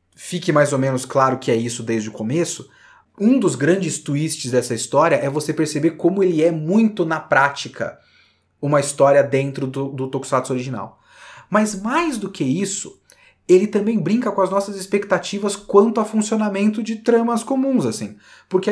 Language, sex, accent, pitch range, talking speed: Portuguese, male, Brazilian, 145-215 Hz, 165 wpm